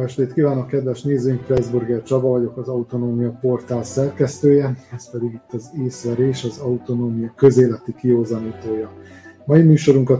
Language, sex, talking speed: Hungarian, male, 130 wpm